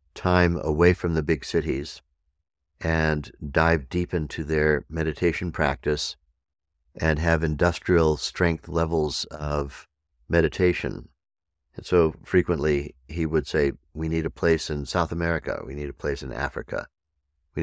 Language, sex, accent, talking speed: English, male, American, 135 wpm